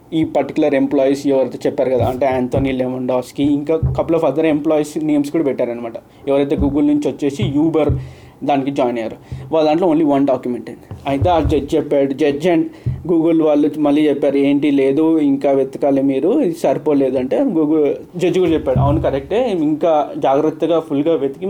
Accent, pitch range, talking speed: native, 140-185 Hz, 165 wpm